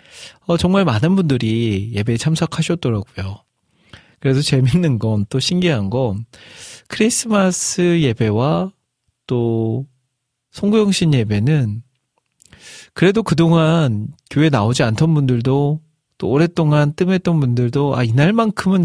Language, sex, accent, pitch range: Korean, male, native, 110-145 Hz